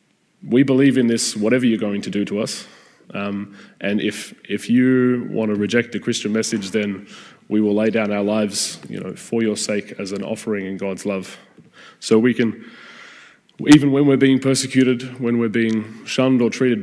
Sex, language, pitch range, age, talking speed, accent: male, English, 105-120 Hz, 20-39, 195 wpm, Australian